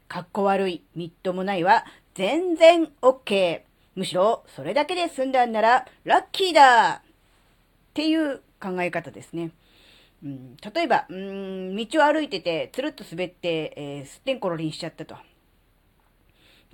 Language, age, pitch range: Japanese, 40-59, 155-225 Hz